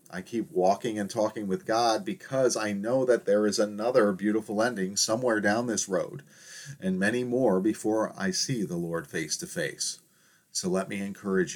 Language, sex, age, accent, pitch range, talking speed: English, male, 40-59, American, 95-125 Hz, 180 wpm